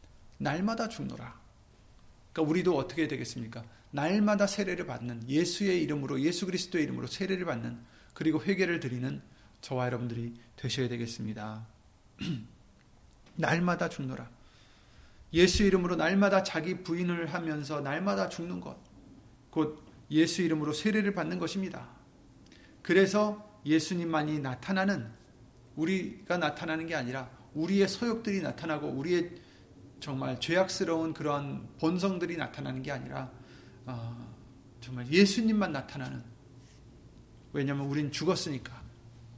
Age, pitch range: 40-59, 125-180 Hz